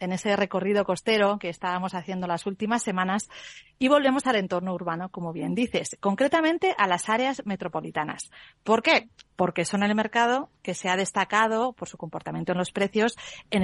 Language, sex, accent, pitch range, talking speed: Spanish, female, Spanish, 180-225 Hz, 175 wpm